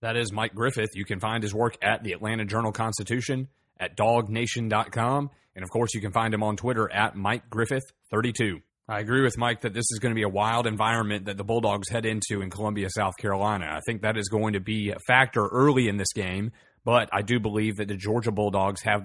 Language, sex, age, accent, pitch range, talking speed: English, male, 30-49, American, 105-120 Hz, 220 wpm